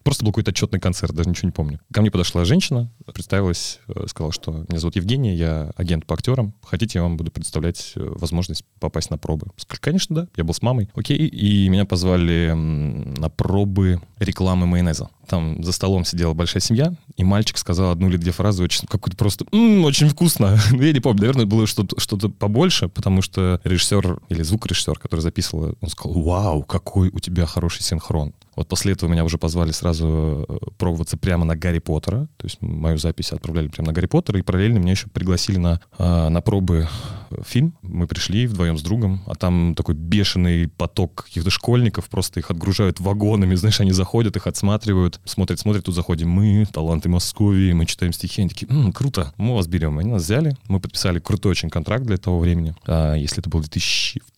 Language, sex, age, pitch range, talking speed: Russian, male, 20-39, 85-105 Hz, 190 wpm